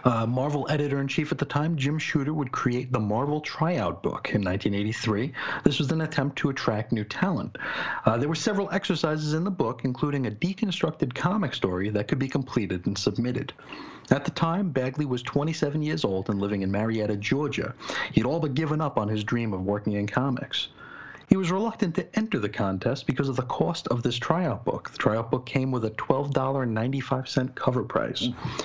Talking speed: 195 wpm